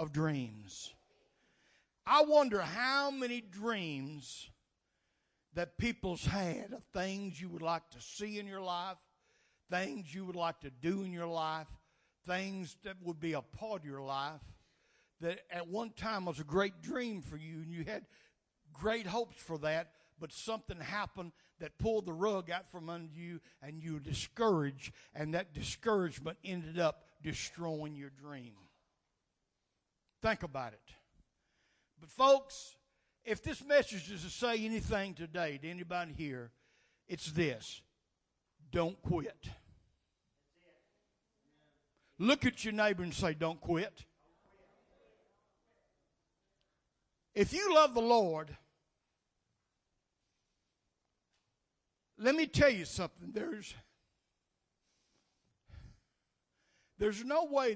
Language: English